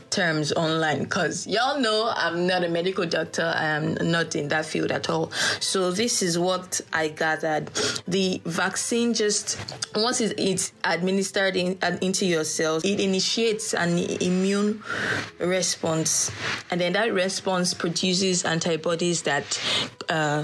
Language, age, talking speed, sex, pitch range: English, 20-39, 130 wpm, female, 160-190 Hz